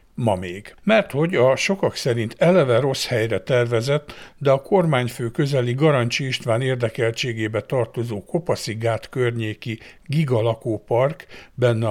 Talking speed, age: 110 wpm, 60-79